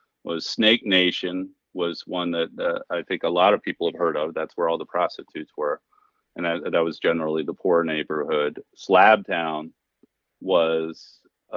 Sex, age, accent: male, 40-59, American